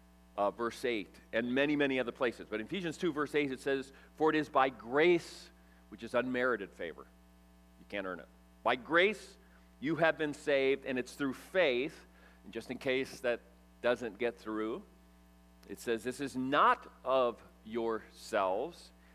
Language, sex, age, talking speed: English, male, 40-59, 165 wpm